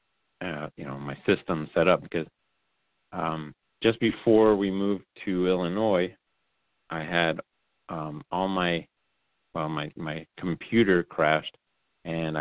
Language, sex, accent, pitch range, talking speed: English, male, American, 75-95 Hz, 125 wpm